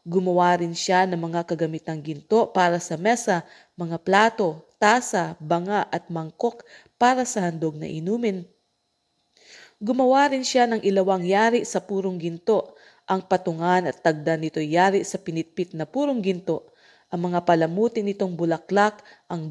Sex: female